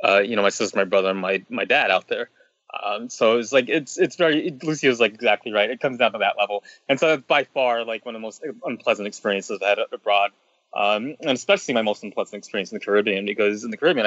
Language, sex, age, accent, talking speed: English, male, 20-39, American, 255 wpm